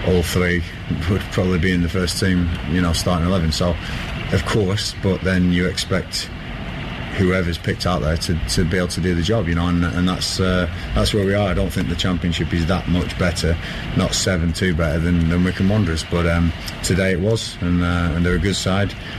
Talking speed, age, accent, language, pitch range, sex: 220 wpm, 30-49, British, English, 85-95 Hz, male